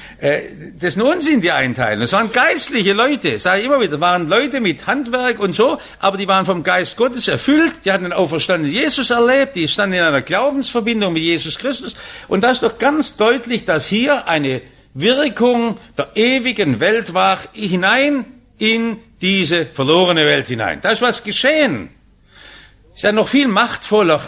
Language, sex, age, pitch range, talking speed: English, male, 60-79, 140-225 Hz, 175 wpm